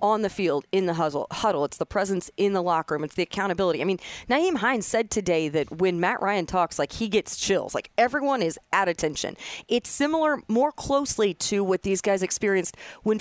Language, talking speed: English, 210 wpm